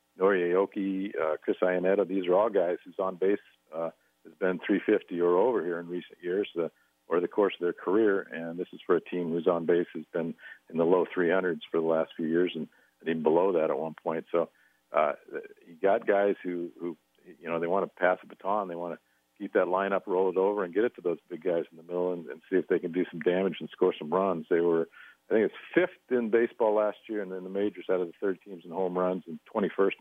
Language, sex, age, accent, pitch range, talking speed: English, male, 50-69, American, 85-100 Hz, 255 wpm